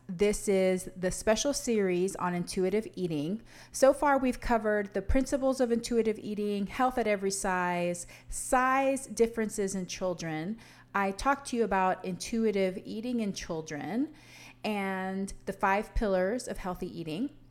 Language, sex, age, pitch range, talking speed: English, female, 30-49, 185-235 Hz, 140 wpm